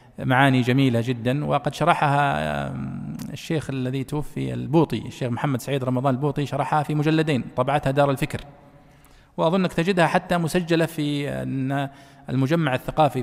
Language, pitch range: Arabic, 125-160 Hz